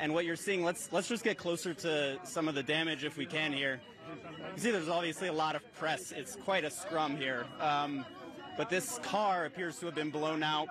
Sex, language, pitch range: male, English, 150-185 Hz